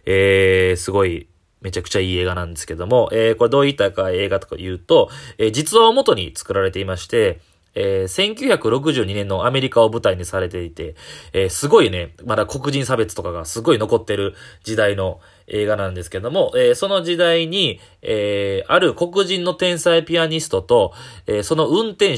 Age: 20-39